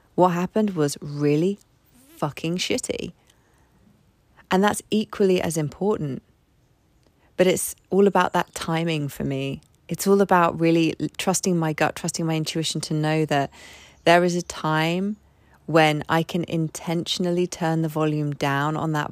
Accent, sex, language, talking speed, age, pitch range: British, female, English, 145 wpm, 20-39, 145-175 Hz